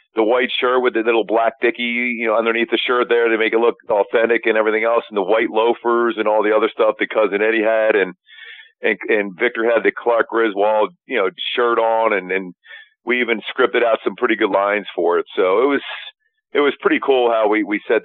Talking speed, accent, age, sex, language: 235 wpm, American, 40-59, male, English